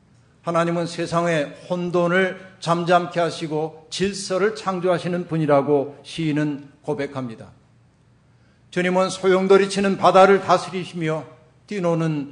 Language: Korean